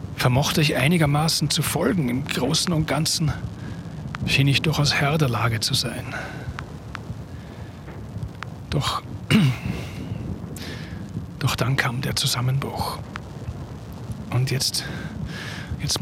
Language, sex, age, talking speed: German, male, 40-59, 95 wpm